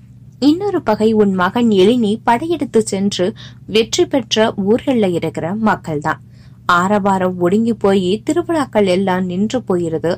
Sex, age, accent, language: female, 20-39, native, Tamil